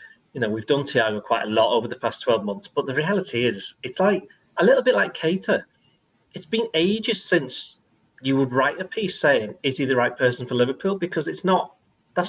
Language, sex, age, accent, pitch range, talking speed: English, male, 30-49, British, 125-180 Hz, 220 wpm